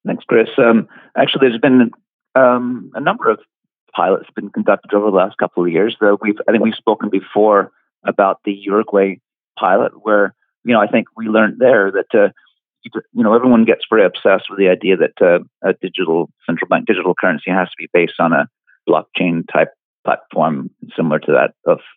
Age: 40-59